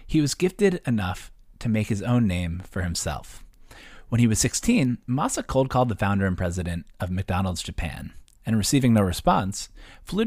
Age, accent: 30-49, American